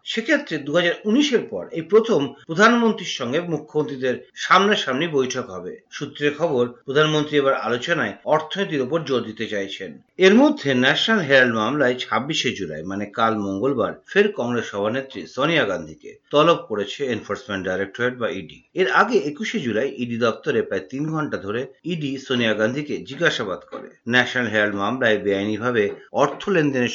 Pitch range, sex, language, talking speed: 115-185 Hz, male, Bengali, 100 wpm